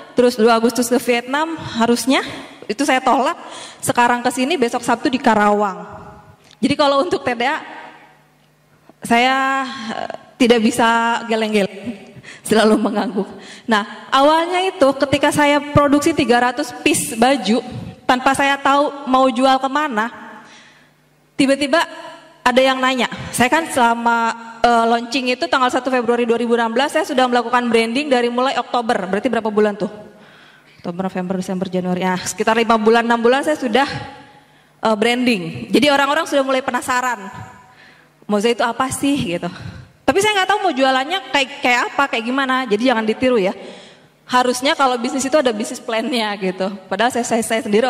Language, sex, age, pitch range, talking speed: Indonesian, female, 20-39, 215-270 Hz, 145 wpm